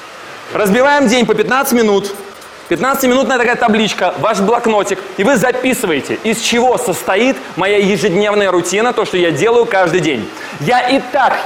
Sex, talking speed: male, 145 wpm